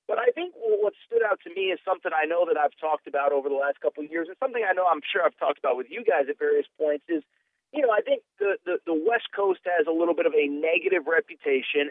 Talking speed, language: 270 wpm, English